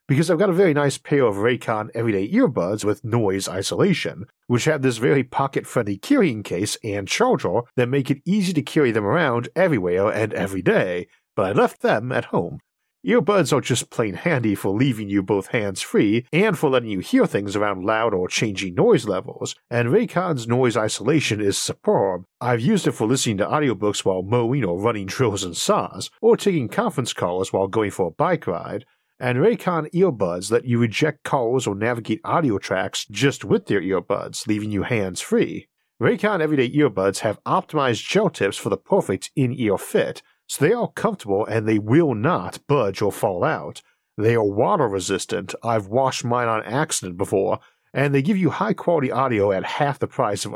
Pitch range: 105-150 Hz